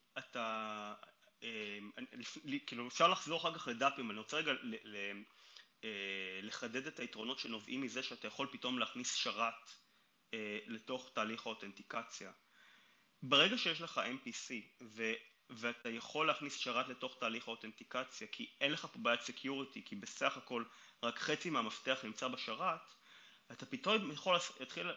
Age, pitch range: 30-49, 110-145 Hz